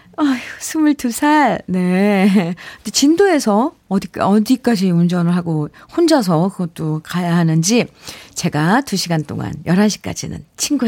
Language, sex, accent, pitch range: Korean, female, native, 175-260 Hz